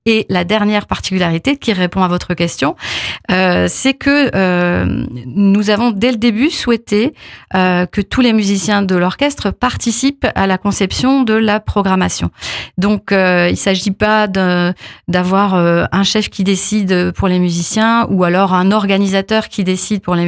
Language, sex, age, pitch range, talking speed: French, female, 30-49, 180-215 Hz, 165 wpm